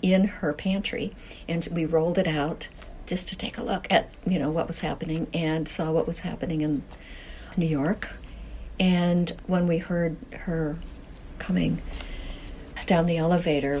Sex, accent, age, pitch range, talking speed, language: female, American, 60-79, 155-185 Hz, 155 wpm, English